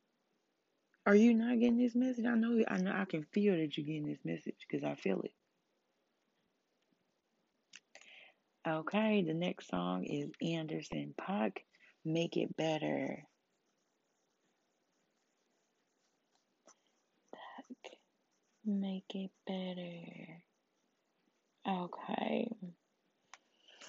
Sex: female